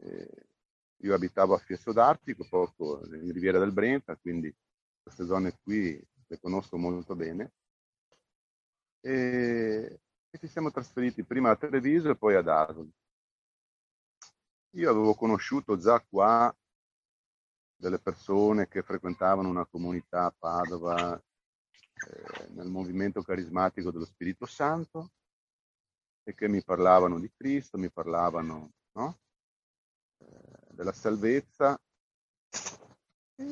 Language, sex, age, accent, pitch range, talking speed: Italian, male, 40-59, native, 90-120 Hz, 110 wpm